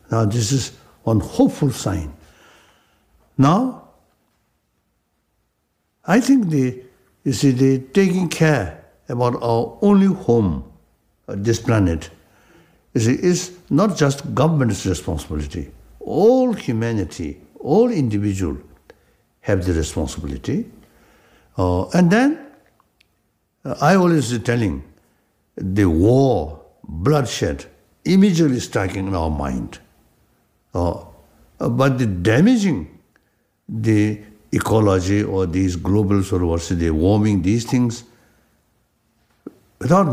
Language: English